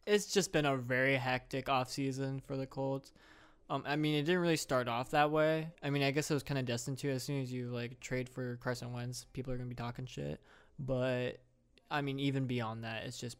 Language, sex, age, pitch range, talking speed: English, male, 20-39, 120-145 Hz, 245 wpm